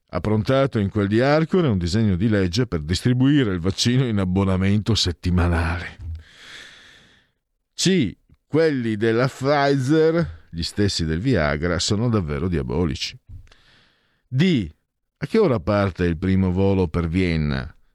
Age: 50-69